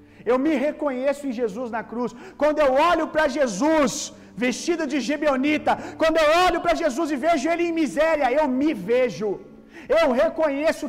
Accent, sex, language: Brazilian, male, Gujarati